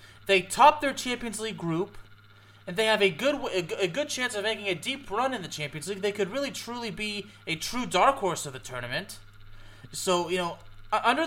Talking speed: 210 wpm